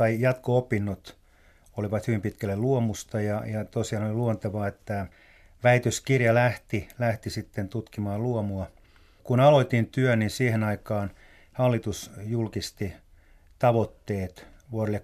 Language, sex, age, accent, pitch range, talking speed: Finnish, male, 30-49, native, 100-115 Hz, 110 wpm